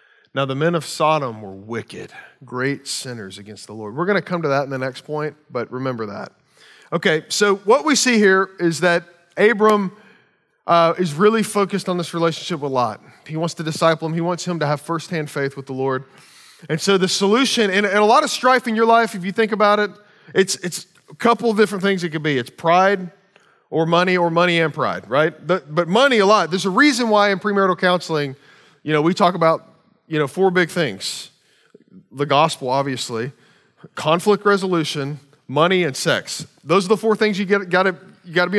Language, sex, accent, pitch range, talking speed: English, male, American, 155-205 Hz, 210 wpm